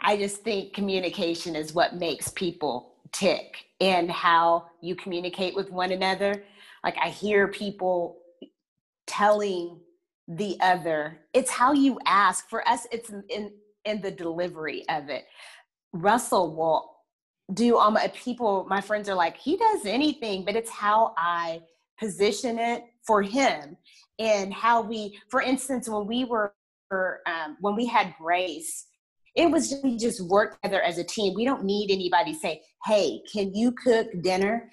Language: English